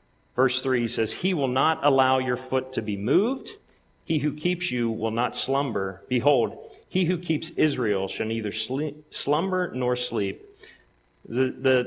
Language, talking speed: English, 160 wpm